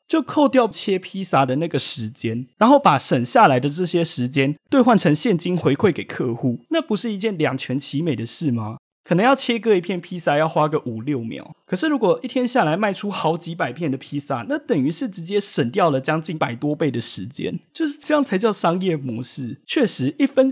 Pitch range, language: 130-200 Hz, Chinese